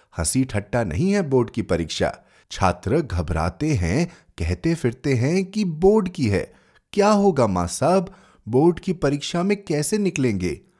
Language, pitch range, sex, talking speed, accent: Hindi, 110-180 Hz, male, 150 wpm, native